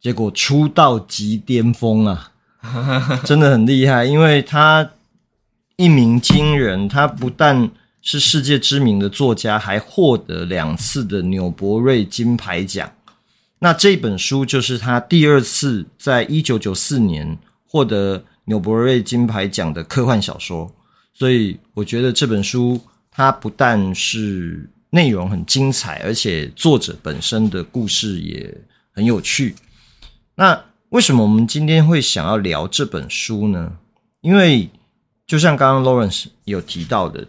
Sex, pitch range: male, 105-140 Hz